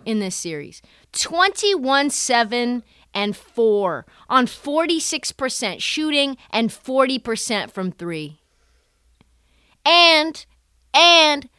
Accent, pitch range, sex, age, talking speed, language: American, 210-295 Hz, female, 30-49, 105 wpm, English